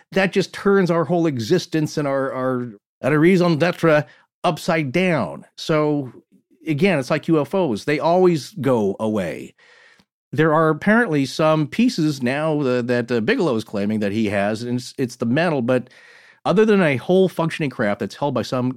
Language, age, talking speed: English, 40-59, 170 wpm